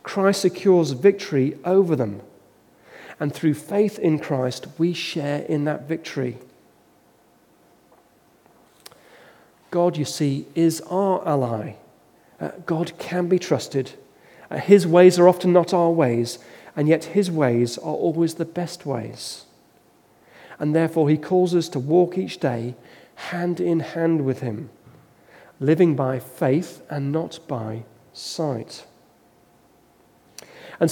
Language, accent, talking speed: English, British, 125 wpm